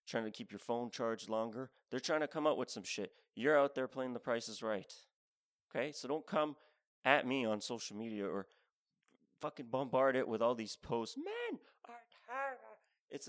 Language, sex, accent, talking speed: English, male, American, 190 wpm